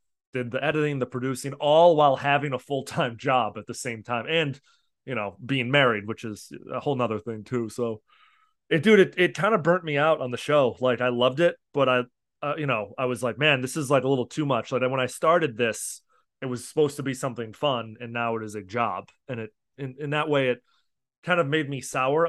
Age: 20-39